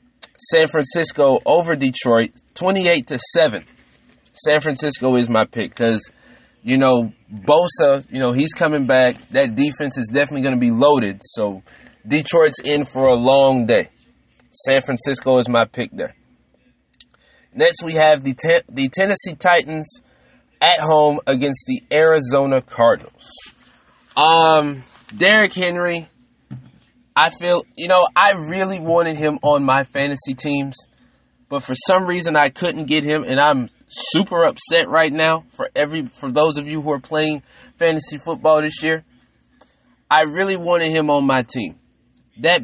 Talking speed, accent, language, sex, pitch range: 150 wpm, American, English, male, 130-160 Hz